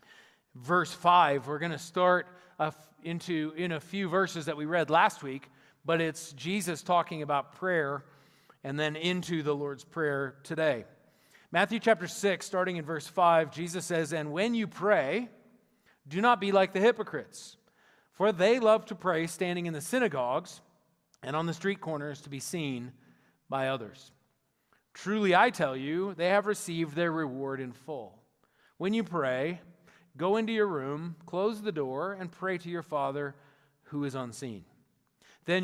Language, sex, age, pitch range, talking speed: English, male, 40-59, 145-185 Hz, 160 wpm